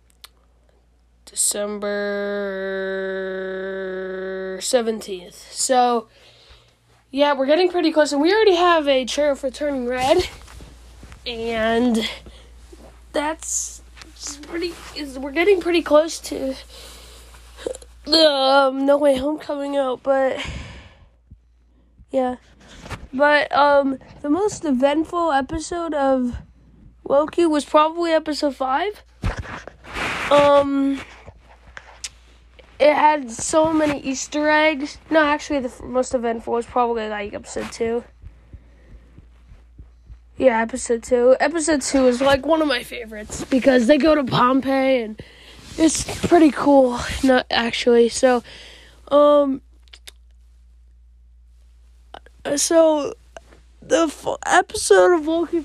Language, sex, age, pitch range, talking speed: English, female, 10-29, 195-300 Hz, 105 wpm